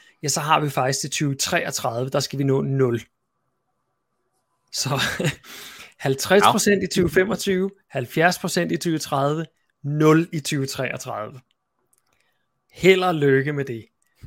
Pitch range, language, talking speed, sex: 135-160 Hz, Danish, 110 wpm, male